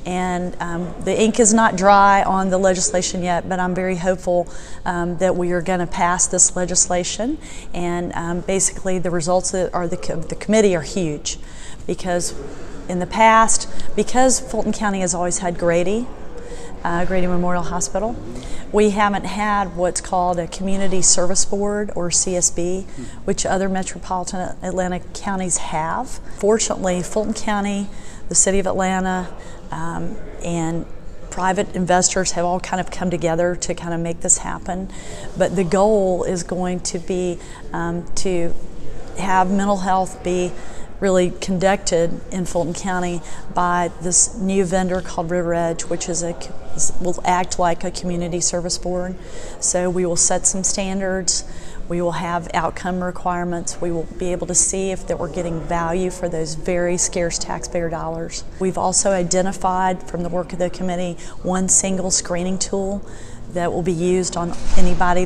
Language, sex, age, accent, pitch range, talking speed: English, female, 40-59, American, 175-190 Hz, 155 wpm